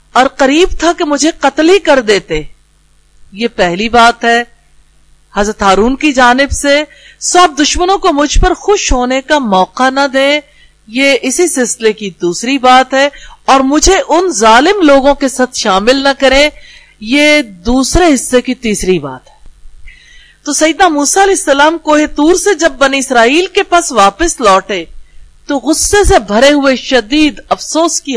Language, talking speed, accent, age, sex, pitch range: English, 160 wpm, Indian, 50-69, female, 235-315 Hz